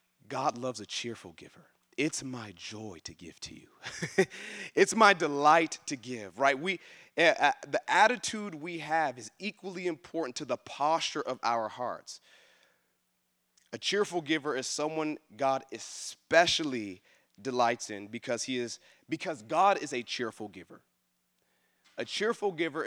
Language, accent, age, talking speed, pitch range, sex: English, American, 30-49, 145 wpm, 115-155 Hz, male